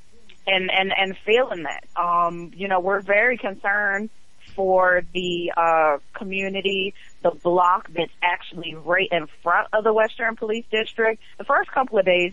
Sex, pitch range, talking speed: female, 170-195 Hz, 155 wpm